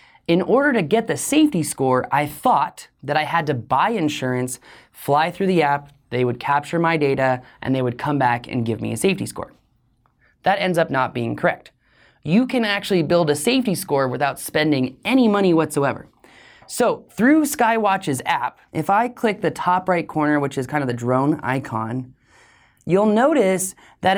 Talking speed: 185 wpm